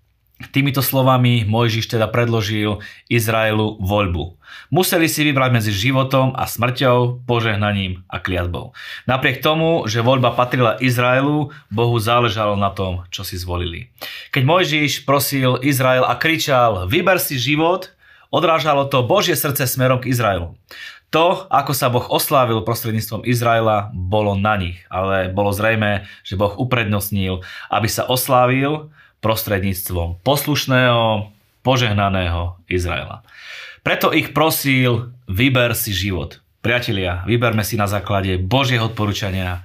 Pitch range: 100-130 Hz